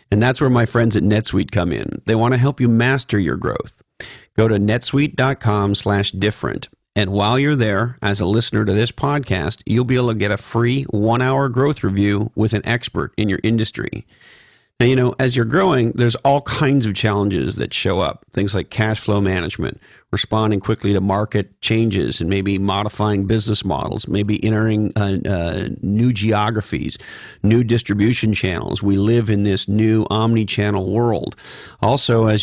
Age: 40-59